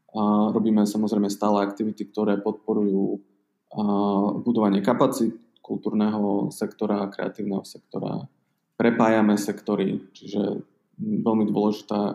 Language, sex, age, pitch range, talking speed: Slovak, male, 20-39, 100-110 Hz, 95 wpm